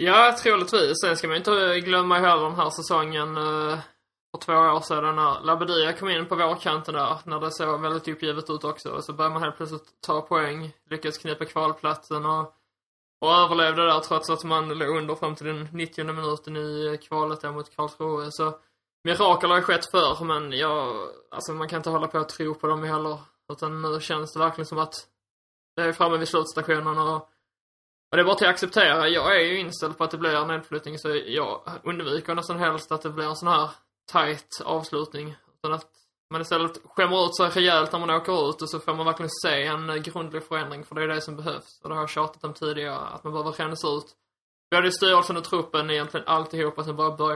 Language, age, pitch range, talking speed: Swedish, 20-39, 155-165 Hz, 220 wpm